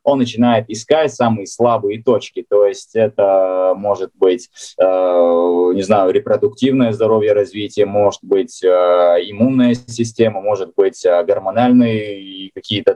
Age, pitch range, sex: 20-39, 100-135 Hz, male